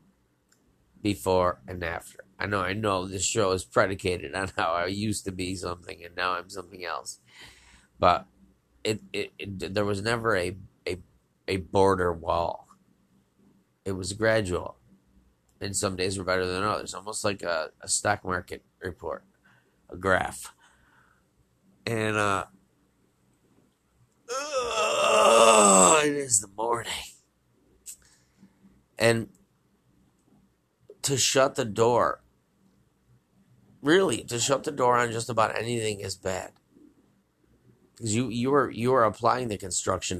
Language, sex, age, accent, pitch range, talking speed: English, male, 30-49, American, 90-115 Hz, 130 wpm